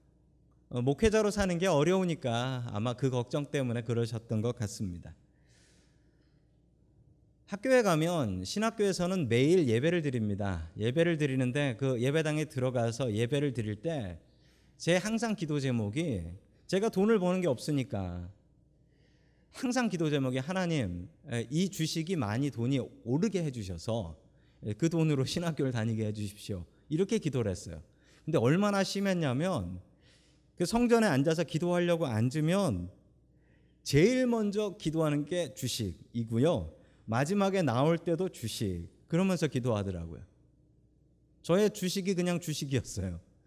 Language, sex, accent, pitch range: Korean, male, native, 115-190 Hz